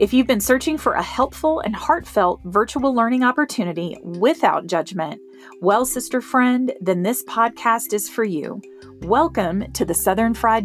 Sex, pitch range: female, 185-260 Hz